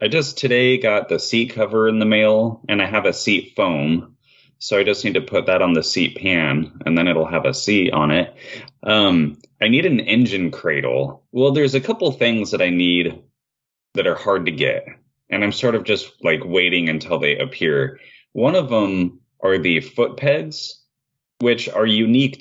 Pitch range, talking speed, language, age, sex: 80-125 Hz, 200 wpm, English, 30-49, male